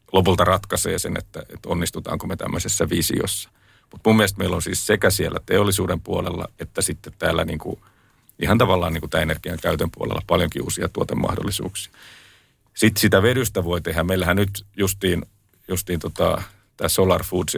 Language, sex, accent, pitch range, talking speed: Finnish, male, native, 90-105 Hz, 155 wpm